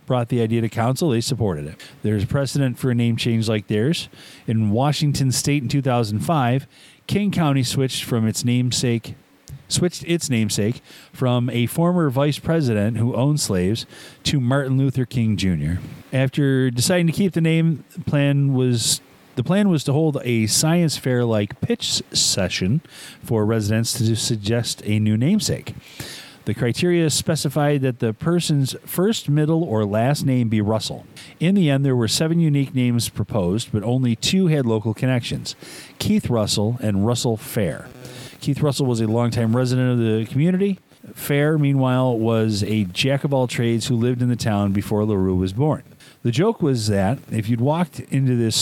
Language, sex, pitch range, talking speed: English, male, 115-145 Hz, 165 wpm